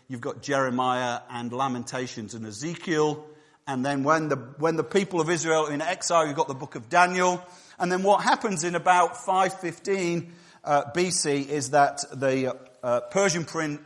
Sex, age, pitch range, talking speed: male, 50-69, 135-170 Hz, 180 wpm